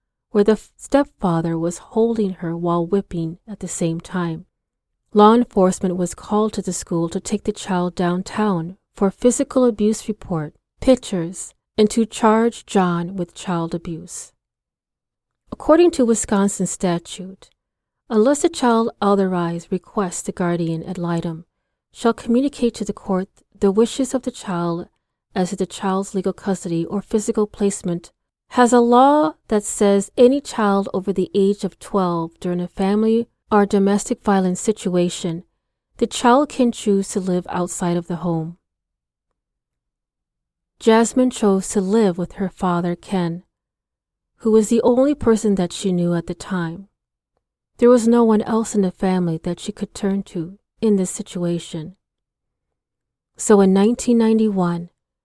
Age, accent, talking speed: 40-59, American, 145 wpm